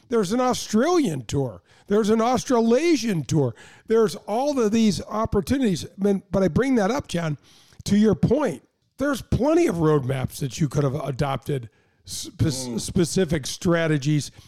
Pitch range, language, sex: 145-235 Hz, English, male